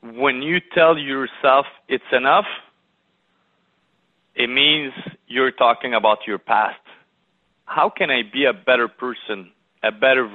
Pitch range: 125-180 Hz